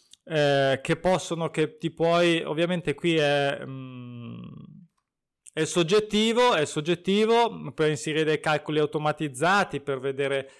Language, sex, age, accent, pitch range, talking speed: Italian, male, 20-39, native, 150-185 Hz, 120 wpm